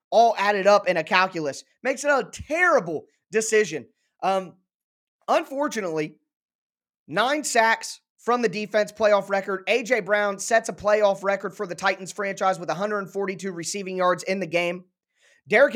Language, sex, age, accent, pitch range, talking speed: English, male, 20-39, American, 185-230 Hz, 145 wpm